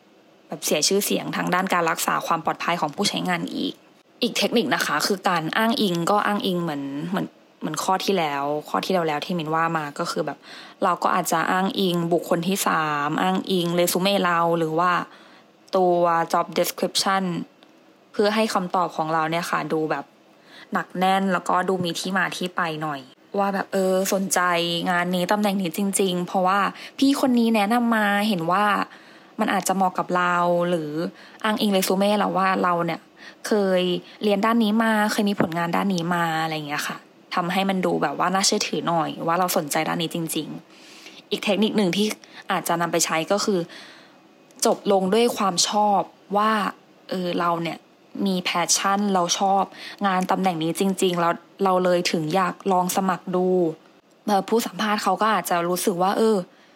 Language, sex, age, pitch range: English, female, 20-39, 170-205 Hz